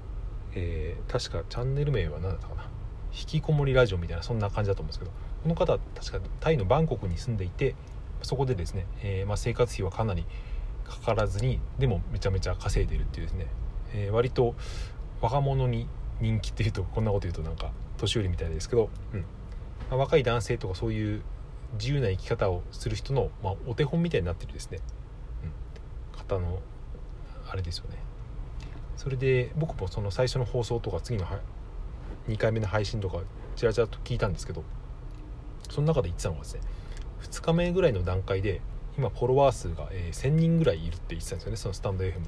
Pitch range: 95-125 Hz